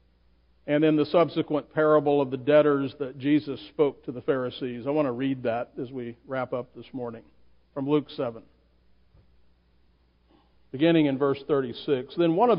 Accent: American